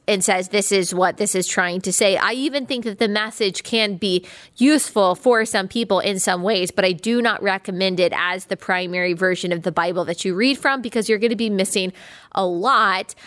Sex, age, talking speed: female, 20-39, 225 wpm